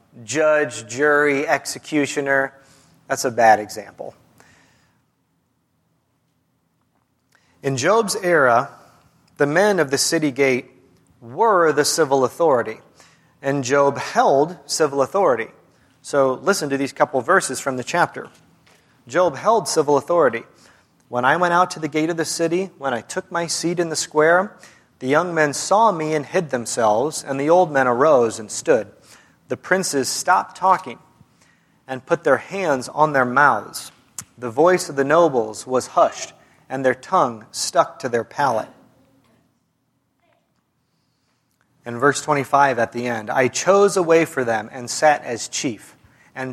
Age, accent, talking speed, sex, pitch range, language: 30-49, American, 145 wpm, male, 130-165 Hz, English